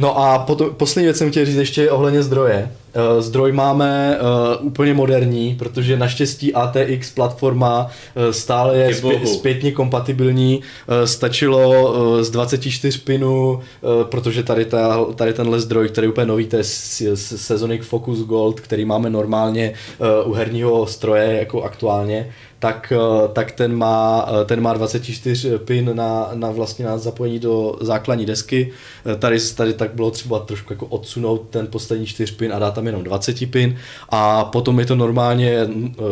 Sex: male